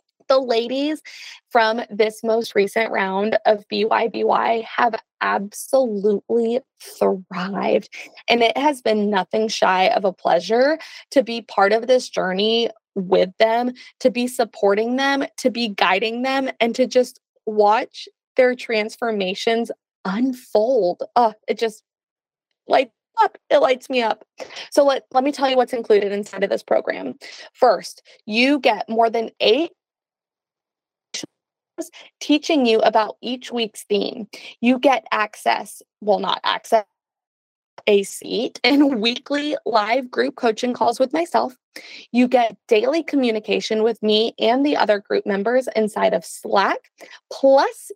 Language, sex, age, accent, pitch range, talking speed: English, female, 20-39, American, 215-260 Hz, 135 wpm